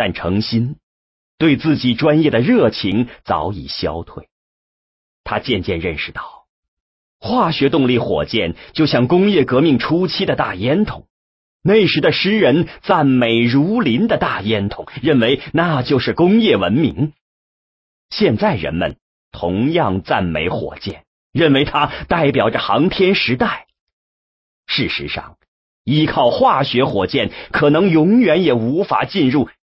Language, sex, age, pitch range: English, male, 40-59, 110-155 Hz